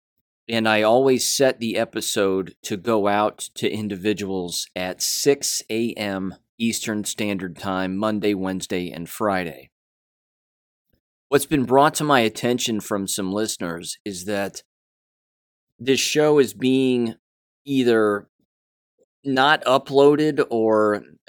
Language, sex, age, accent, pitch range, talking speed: English, male, 30-49, American, 95-120 Hz, 115 wpm